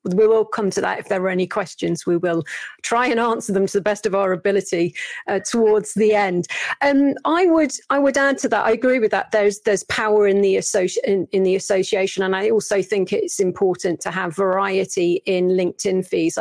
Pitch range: 190-235 Hz